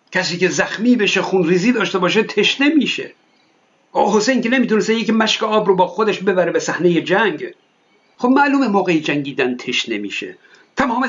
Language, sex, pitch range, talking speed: Persian, male, 180-230 Hz, 170 wpm